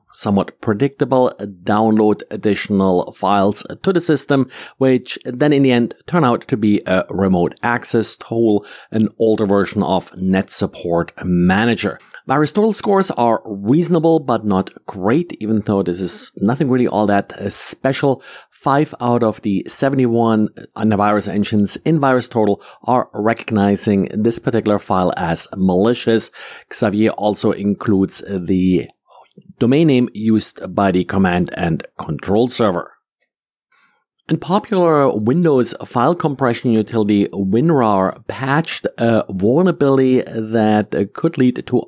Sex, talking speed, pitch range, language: male, 125 wpm, 100-130 Hz, English